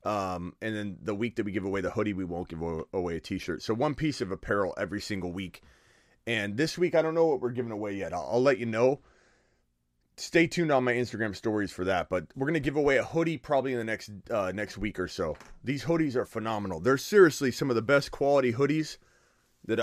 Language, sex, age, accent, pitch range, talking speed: English, male, 30-49, American, 110-175 Hz, 240 wpm